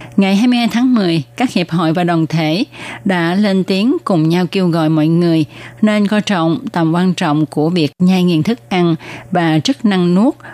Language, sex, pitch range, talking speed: Vietnamese, female, 155-205 Hz, 200 wpm